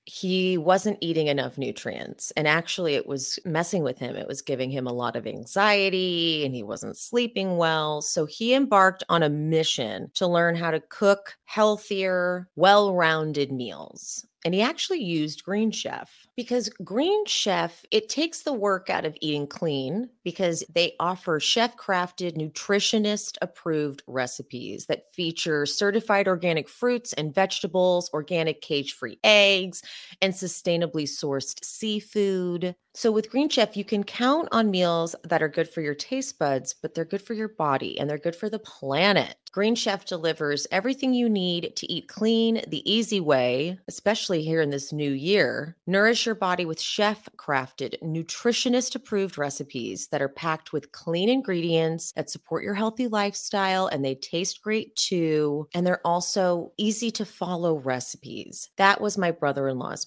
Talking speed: 155 wpm